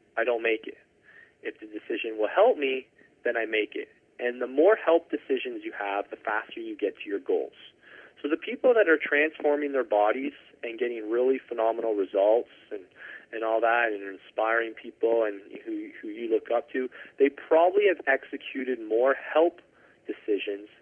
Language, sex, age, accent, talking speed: English, male, 30-49, American, 180 wpm